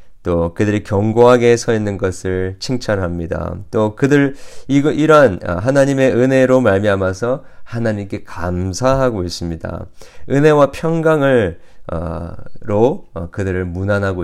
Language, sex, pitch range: Korean, male, 85-110 Hz